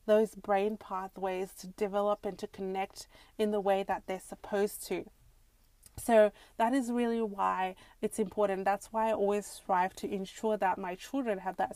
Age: 30-49